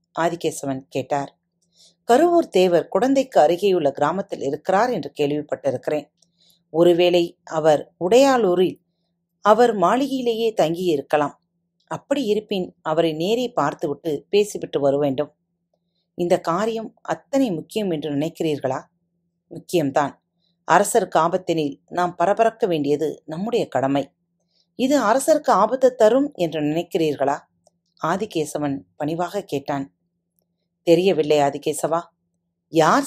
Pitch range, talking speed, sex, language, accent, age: 155-210 Hz, 95 wpm, female, Tamil, native, 40-59